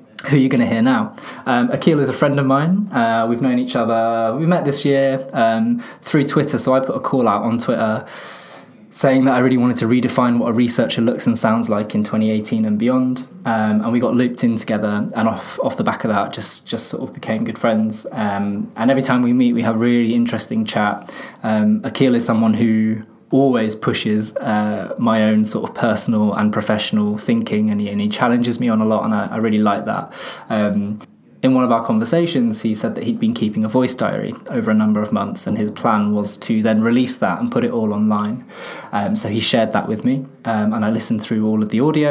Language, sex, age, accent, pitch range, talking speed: English, male, 20-39, British, 110-175 Hz, 235 wpm